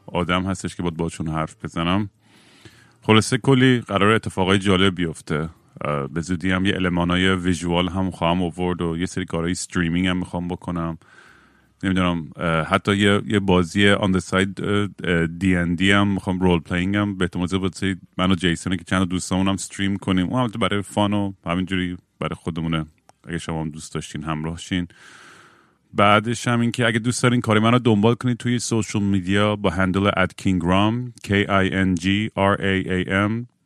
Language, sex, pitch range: Persian, male, 90-100 Hz